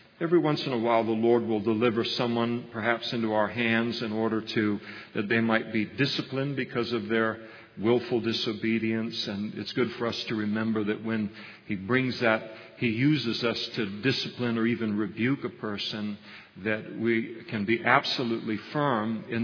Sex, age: male, 50-69